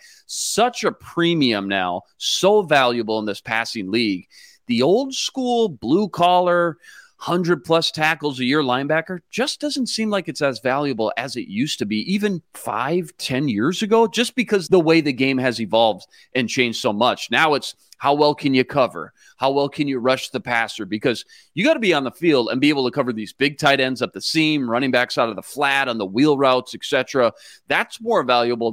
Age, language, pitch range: 30-49, English, 120-180 Hz